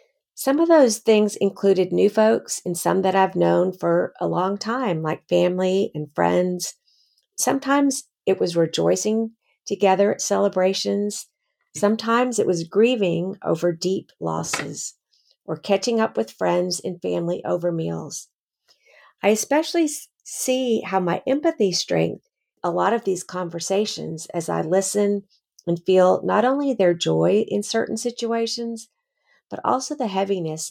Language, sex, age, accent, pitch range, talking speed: English, female, 50-69, American, 170-220 Hz, 140 wpm